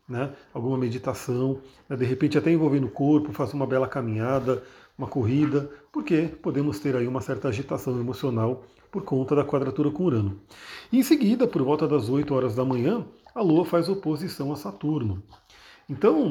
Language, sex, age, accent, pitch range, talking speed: Portuguese, male, 40-59, Brazilian, 130-160 Hz, 175 wpm